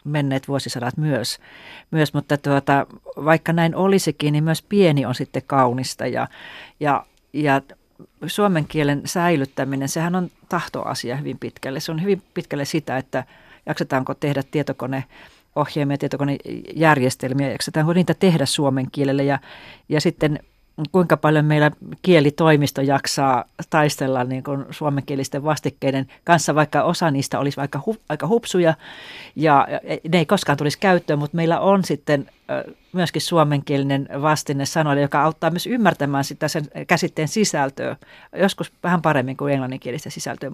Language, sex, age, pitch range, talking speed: Finnish, female, 40-59, 140-170 Hz, 135 wpm